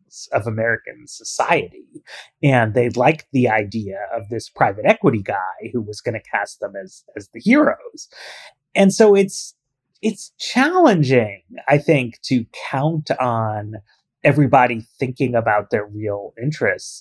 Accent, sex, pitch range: American, male, 115-155 Hz